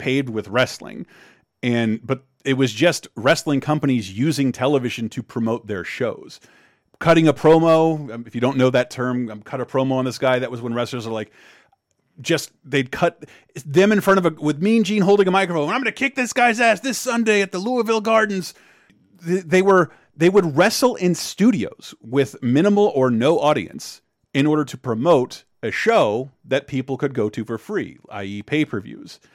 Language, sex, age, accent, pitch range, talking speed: English, male, 30-49, American, 115-160 Hz, 190 wpm